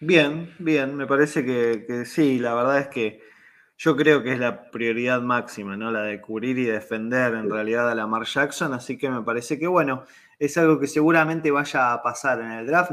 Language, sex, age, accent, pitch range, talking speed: Spanish, male, 20-39, Argentinian, 130-160 Hz, 210 wpm